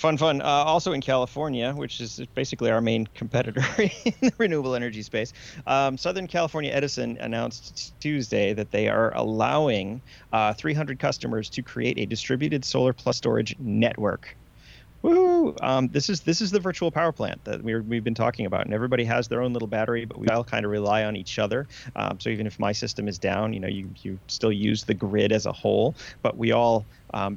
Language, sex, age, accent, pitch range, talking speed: English, male, 30-49, American, 110-135 Hz, 205 wpm